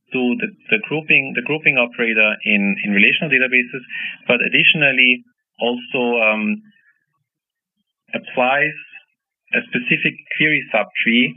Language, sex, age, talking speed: English, male, 30-49, 105 wpm